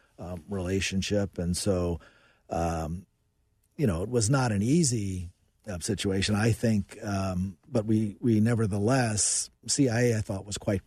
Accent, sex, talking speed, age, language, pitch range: American, male, 145 wpm, 40-59, English, 90-110 Hz